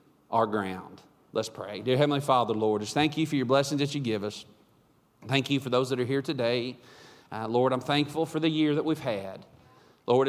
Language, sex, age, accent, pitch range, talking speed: English, male, 40-59, American, 130-160 Hz, 215 wpm